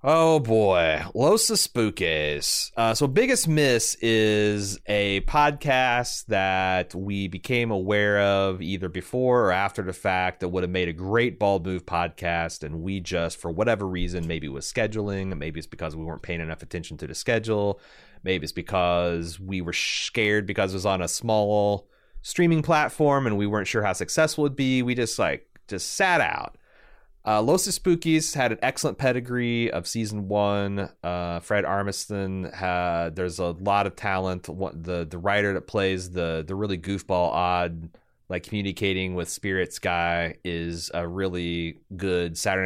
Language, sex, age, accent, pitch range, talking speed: English, male, 30-49, American, 90-115 Hz, 170 wpm